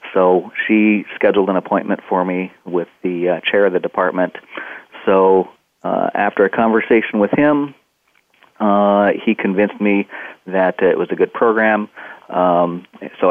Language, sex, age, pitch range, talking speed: English, male, 40-59, 90-105 Hz, 150 wpm